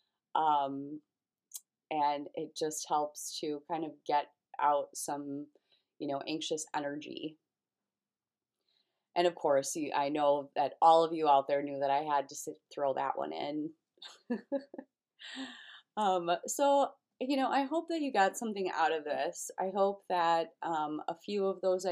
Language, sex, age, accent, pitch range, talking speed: English, female, 30-49, American, 150-185 Hz, 155 wpm